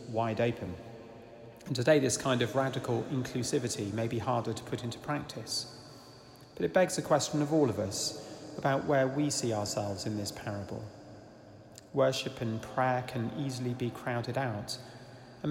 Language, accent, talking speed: English, British, 165 wpm